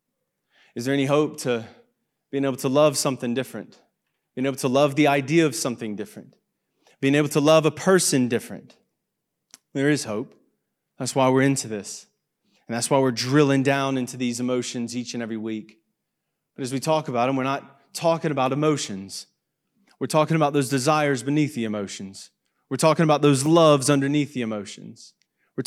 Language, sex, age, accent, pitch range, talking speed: English, male, 30-49, American, 125-160 Hz, 180 wpm